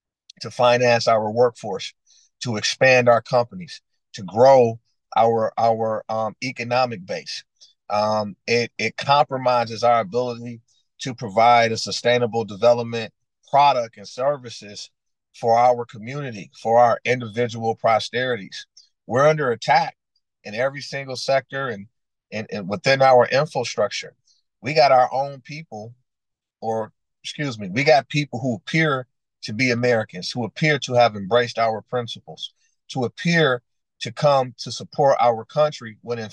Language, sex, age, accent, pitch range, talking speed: English, male, 40-59, American, 115-135 Hz, 135 wpm